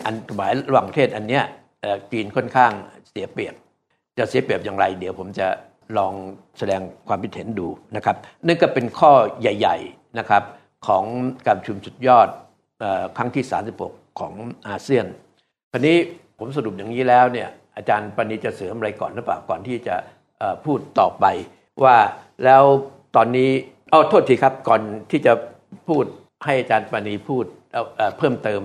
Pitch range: 105-135 Hz